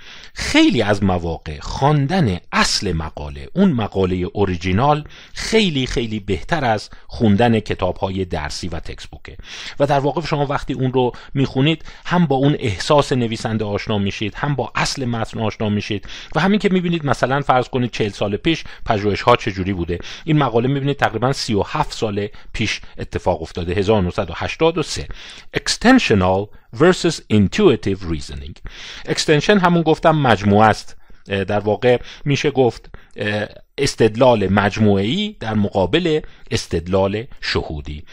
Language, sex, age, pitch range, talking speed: Persian, male, 40-59, 95-140 Hz, 130 wpm